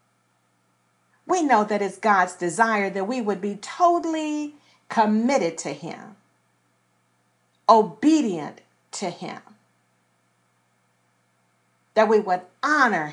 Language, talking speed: English, 95 wpm